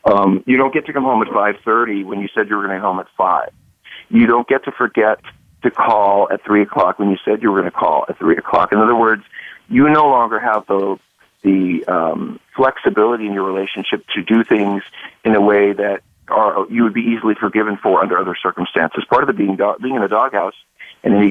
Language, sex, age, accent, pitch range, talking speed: English, male, 40-59, American, 100-125 Hz, 235 wpm